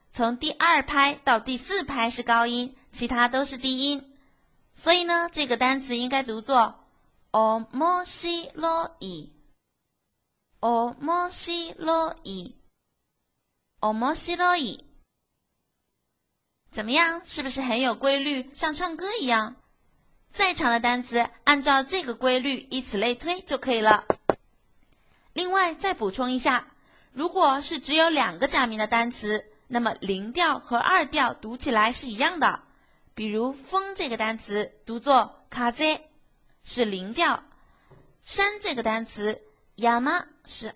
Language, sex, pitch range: Chinese, female, 235-325 Hz